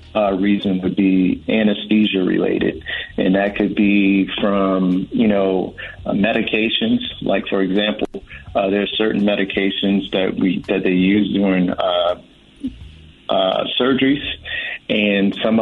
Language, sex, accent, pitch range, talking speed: English, male, American, 95-105 Hz, 125 wpm